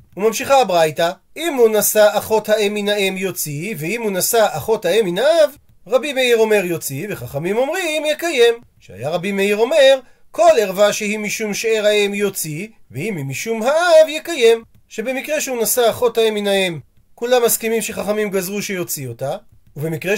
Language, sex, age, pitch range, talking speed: Hebrew, male, 30-49, 190-240 Hz, 145 wpm